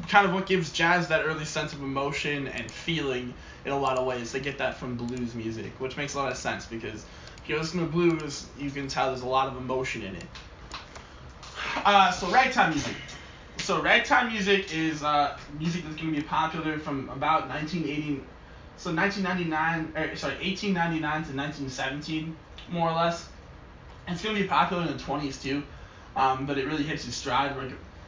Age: 20-39